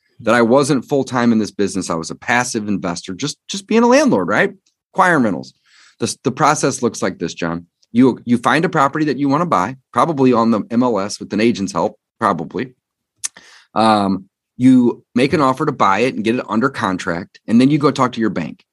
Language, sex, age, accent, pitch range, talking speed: English, male, 30-49, American, 100-140 Hz, 210 wpm